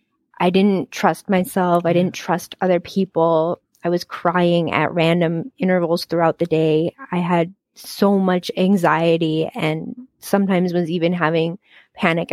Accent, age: American, 20-39